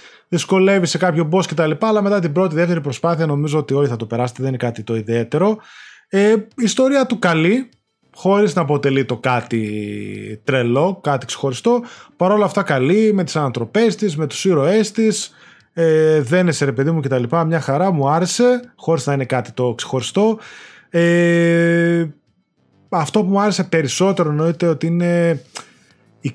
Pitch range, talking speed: 135-200 Hz, 170 wpm